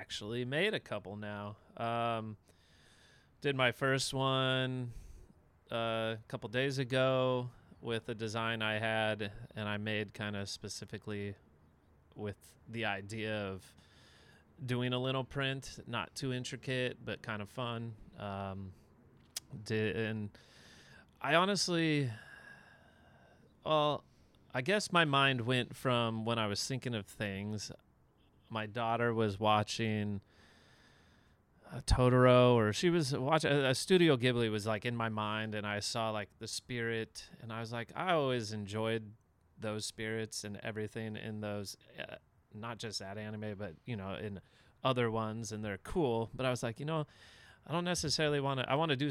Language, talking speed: English, 155 wpm